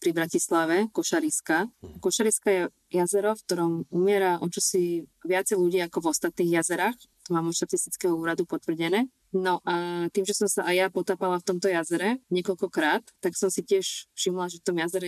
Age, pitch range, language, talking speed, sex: 20-39, 170-195 Hz, Slovak, 175 wpm, female